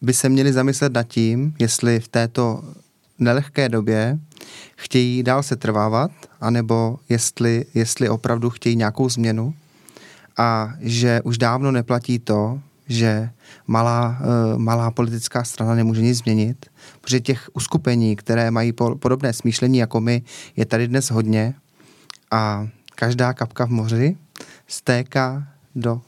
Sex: male